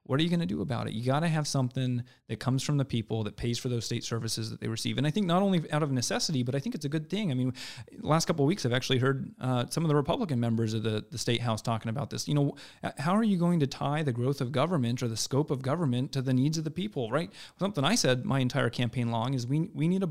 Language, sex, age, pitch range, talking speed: English, male, 30-49, 125-155 Hz, 300 wpm